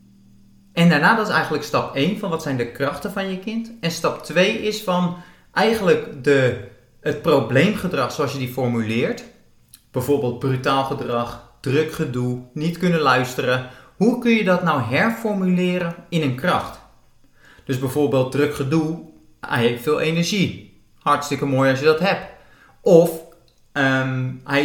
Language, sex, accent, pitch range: Dutch, male, Dutch, 125-180 Hz